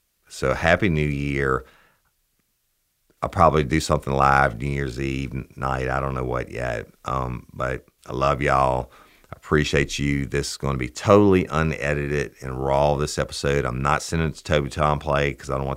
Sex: male